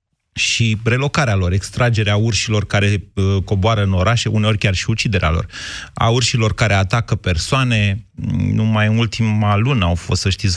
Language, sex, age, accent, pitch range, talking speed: Romanian, male, 30-49, native, 100-130 Hz, 160 wpm